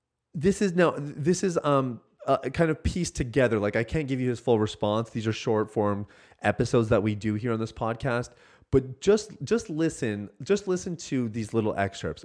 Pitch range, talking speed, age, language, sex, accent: 110-155 Hz, 200 wpm, 30-49, English, male, American